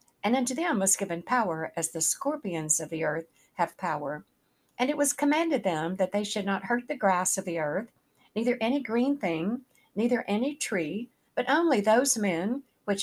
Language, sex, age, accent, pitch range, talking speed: English, female, 60-79, American, 175-235 Hz, 190 wpm